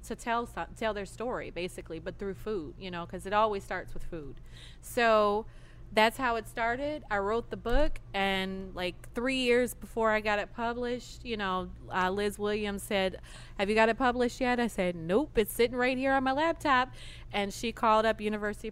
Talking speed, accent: 200 wpm, American